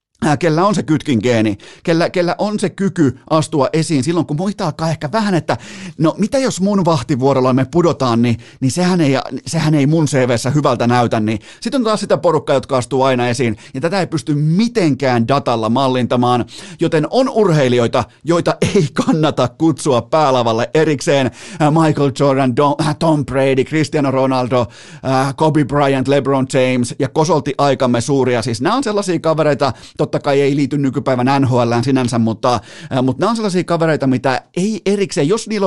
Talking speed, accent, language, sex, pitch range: 165 wpm, native, Finnish, male, 130-165 Hz